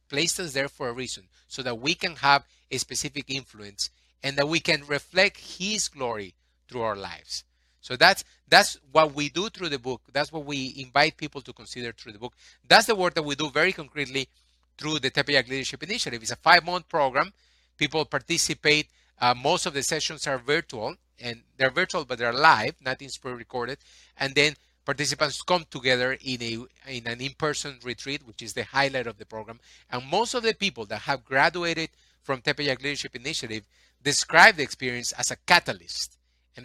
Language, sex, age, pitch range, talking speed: English, male, 30-49, 115-155 Hz, 185 wpm